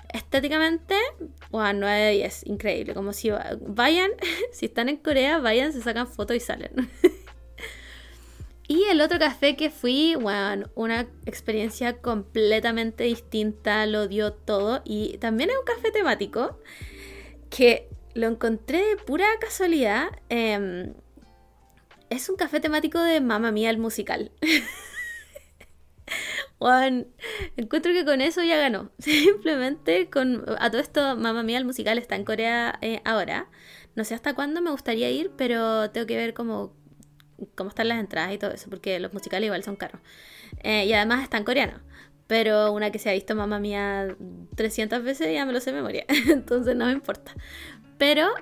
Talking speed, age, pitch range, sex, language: 155 wpm, 20-39, 215-290 Hz, female, Spanish